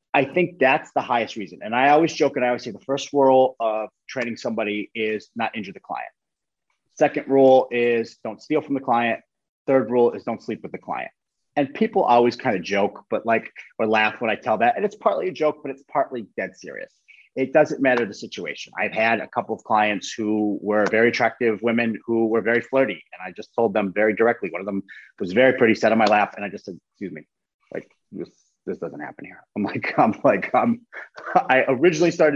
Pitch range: 110-140 Hz